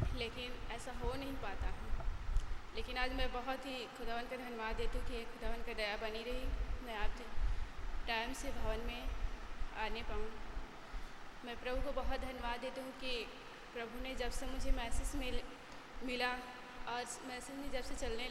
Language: Hindi